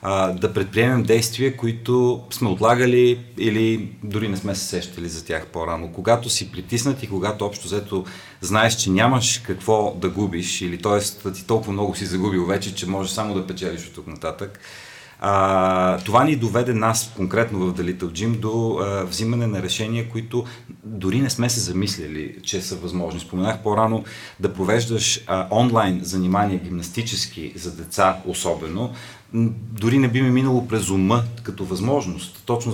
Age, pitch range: 40-59, 95-115 Hz